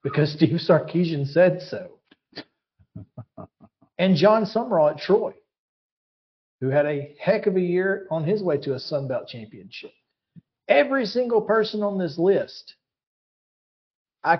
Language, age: English, 40-59